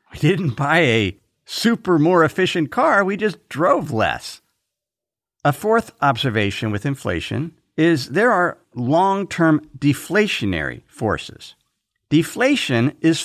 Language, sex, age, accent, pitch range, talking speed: English, male, 50-69, American, 120-170 Hz, 115 wpm